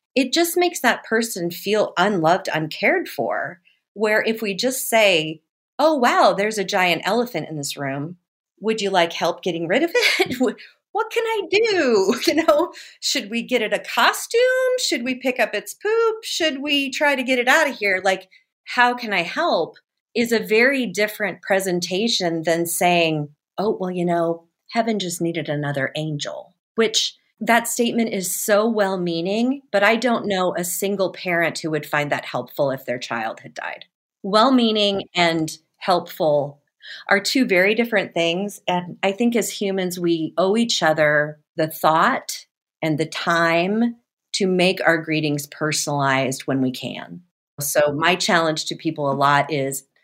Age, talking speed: 40-59, 170 wpm